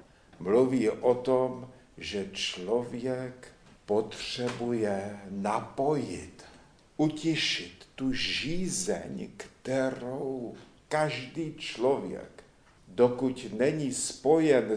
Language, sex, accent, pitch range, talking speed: Czech, male, native, 125-150 Hz, 65 wpm